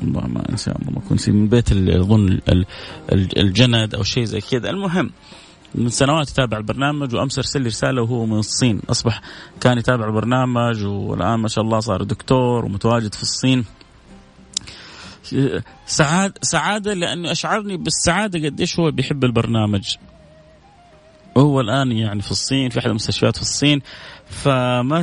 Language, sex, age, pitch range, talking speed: Arabic, male, 30-49, 105-135 Hz, 135 wpm